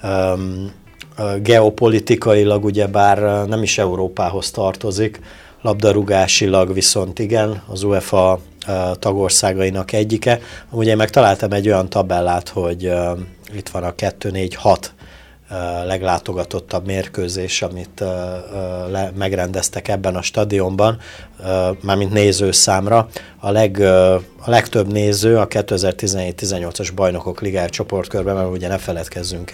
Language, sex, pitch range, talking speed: Hungarian, male, 90-105 Hz, 110 wpm